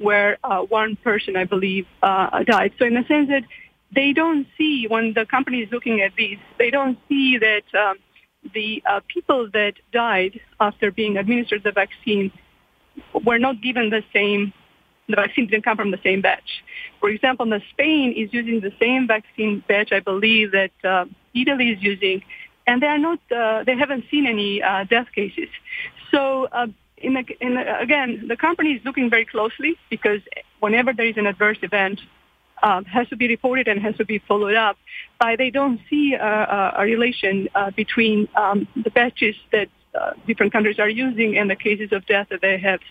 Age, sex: 30-49, female